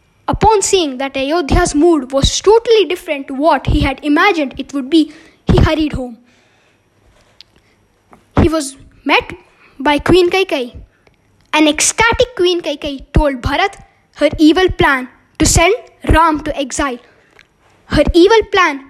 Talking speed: 135 wpm